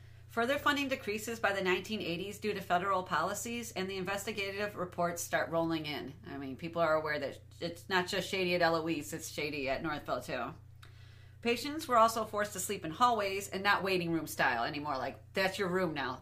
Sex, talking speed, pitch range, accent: female, 195 wpm, 150-205 Hz, American